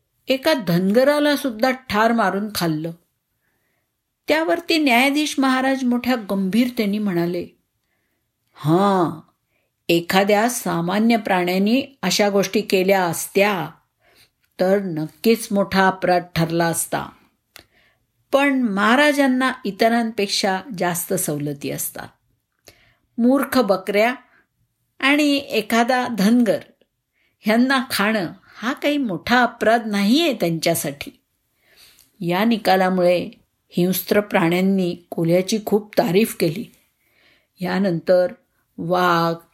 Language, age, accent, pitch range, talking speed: Marathi, 50-69, native, 180-245 Hz, 85 wpm